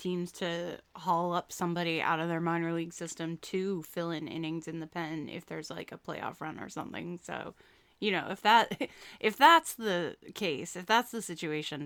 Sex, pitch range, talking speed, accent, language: female, 165-195 Hz, 195 wpm, American, English